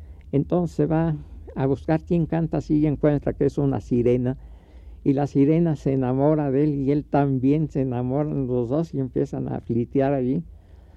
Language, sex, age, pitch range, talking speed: Spanish, male, 60-79, 115-150 Hz, 180 wpm